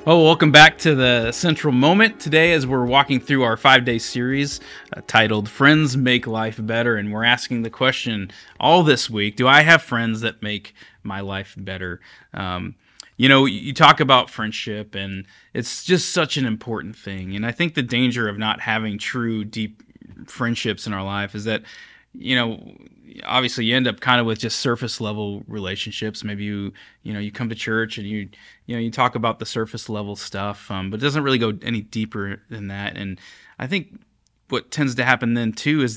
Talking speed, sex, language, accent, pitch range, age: 200 wpm, male, English, American, 105-130 Hz, 20-39